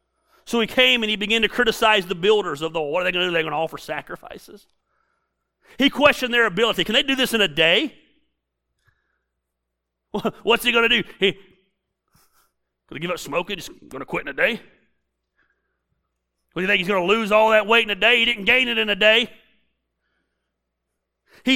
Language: English